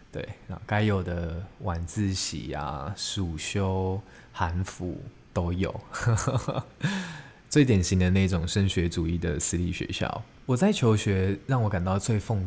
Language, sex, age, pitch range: Chinese, male, 20-39, 90-120 Hz